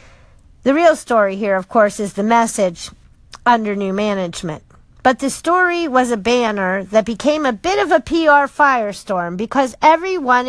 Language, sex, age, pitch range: English, female, 50-69, 220-330 Hz